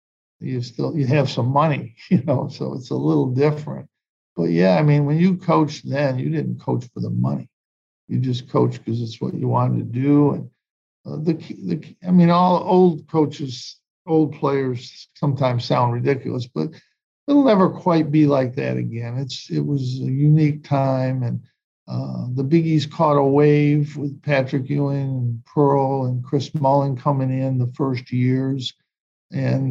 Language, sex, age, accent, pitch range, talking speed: English, male, 60-79, American, 115-145 Hz, 175 wpm